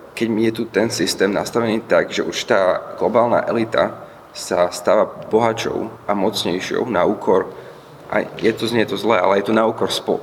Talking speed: 180 wpm